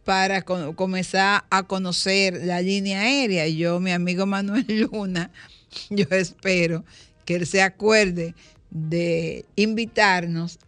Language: Spanish